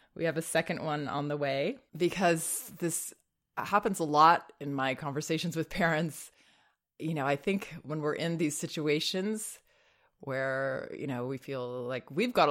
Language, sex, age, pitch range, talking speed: English, female, 20-39, 140-185 Hz, 170 wpm